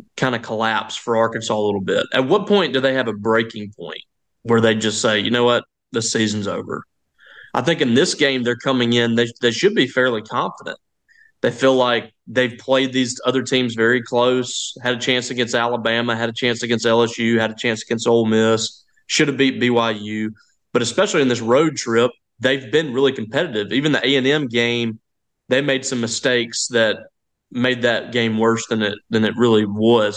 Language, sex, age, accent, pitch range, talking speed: English, male, 30-49, American, 115-130 Hz, 200 wpm